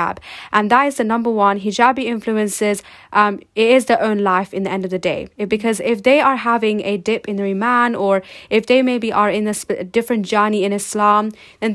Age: 10-29